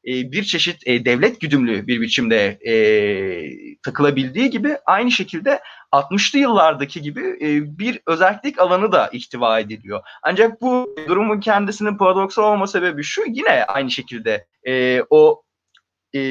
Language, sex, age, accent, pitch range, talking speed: Turkish, male, 30-49, native, 150-215 Hz, 135 wpm